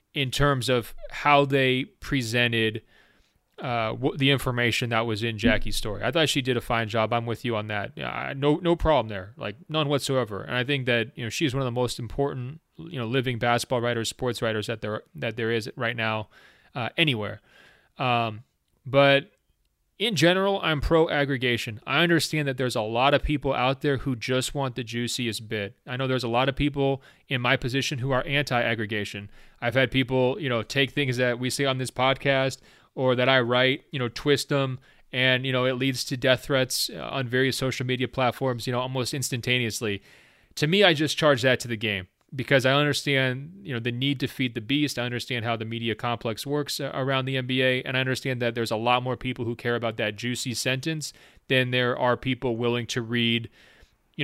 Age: 30-49